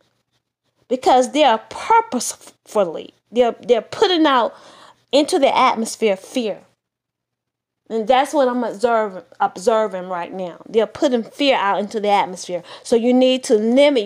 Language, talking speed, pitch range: English, 135 wpm, 215-270 Hz